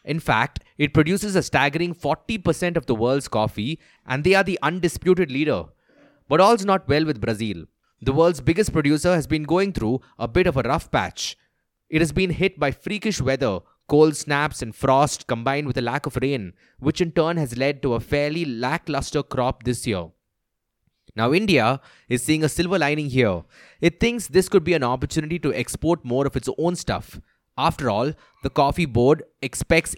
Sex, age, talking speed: male, 20-39, 190 wpm